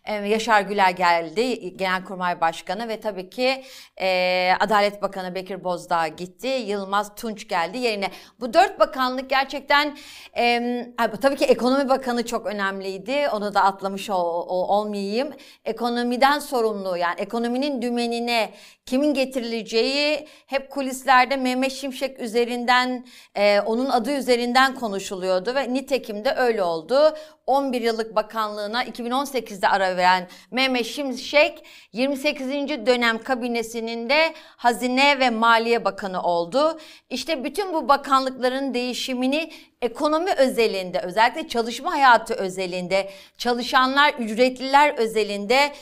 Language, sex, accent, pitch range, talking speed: Turkish, female, native, 205-265 Hz, 110 wpm